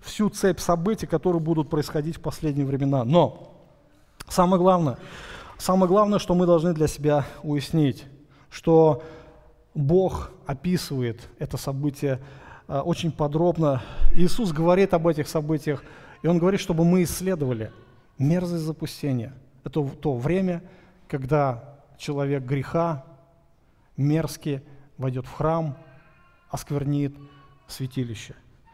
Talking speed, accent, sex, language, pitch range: 105 wpm, native, male, Russian, 140-175 Hz